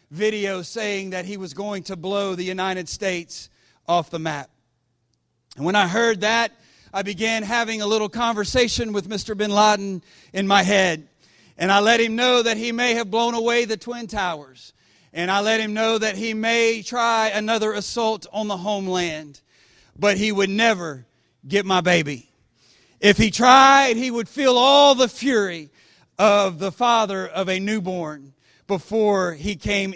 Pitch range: 175-225 Hz